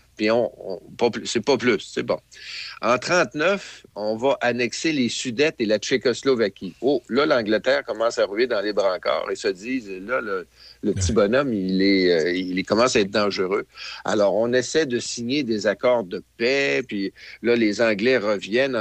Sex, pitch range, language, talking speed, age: male, 105-150 Hz, French, 185 wpm, 50-69